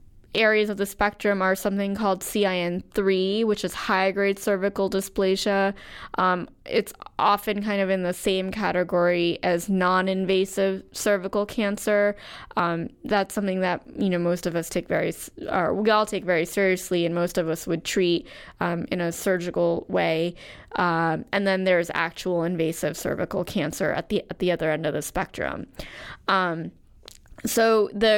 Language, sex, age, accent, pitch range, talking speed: English, female, 10-29, American, 185-225 Hz, 160 wpm